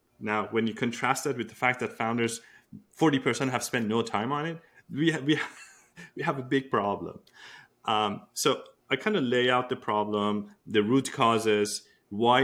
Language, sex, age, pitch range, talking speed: English, male, 30-49, 105-135 Hz, 175 wpm